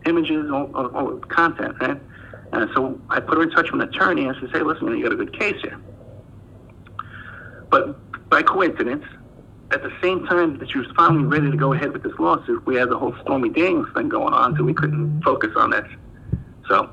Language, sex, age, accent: English, male, 60-79, American